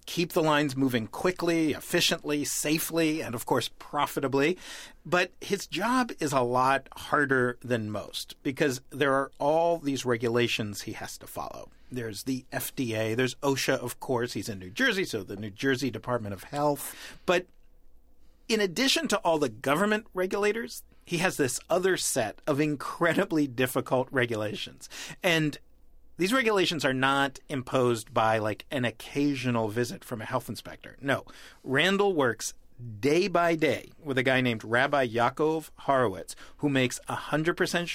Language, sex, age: English, male, 40-59